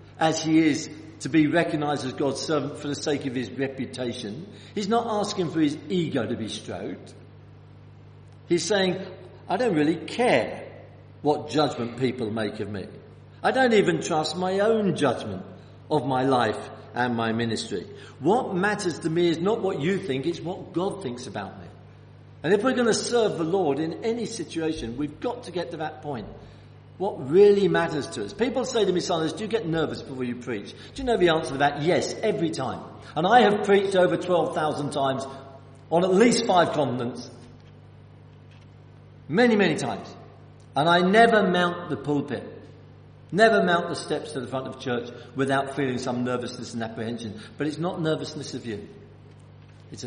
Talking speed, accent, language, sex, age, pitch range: 180 wpm, British, English, male, 50-69, 120-175 Hz